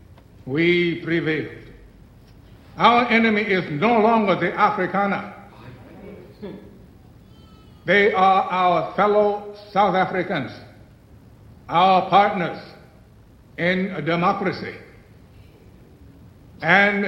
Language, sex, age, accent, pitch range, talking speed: English, male, 60-79, American, 115-185 Hz, 75 wpm